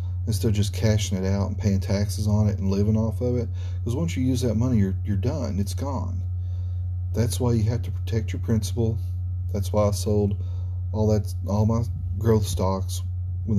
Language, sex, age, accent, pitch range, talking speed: English, male, 40-59, American, 90-100 Hz, 205 wpm